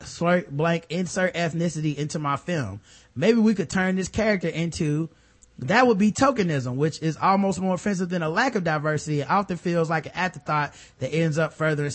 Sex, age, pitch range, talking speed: male, 30-49, 135-185 Hz, 190 wpm